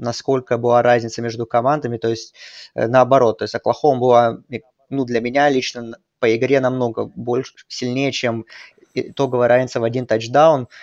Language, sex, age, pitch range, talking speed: Russian, male, 20-39, 120-145 Hz, 150 wpm